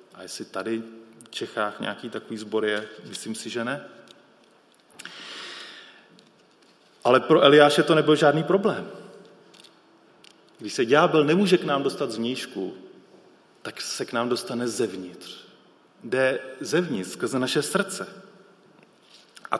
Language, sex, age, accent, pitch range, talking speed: Czech, male, 30-49, native, 115-175 Hz, 130 wpm